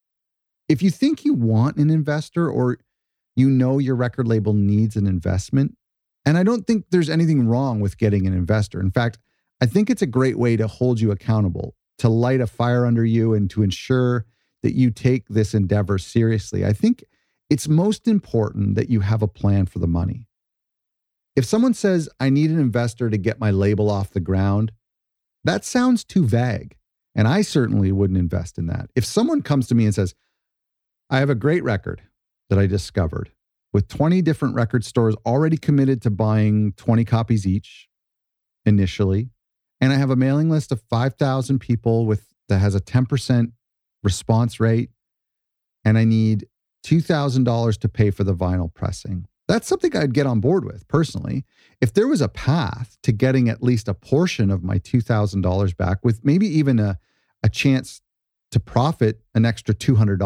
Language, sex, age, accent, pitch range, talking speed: English, male, 40-59, American, 105-135 Hz, 180 wpm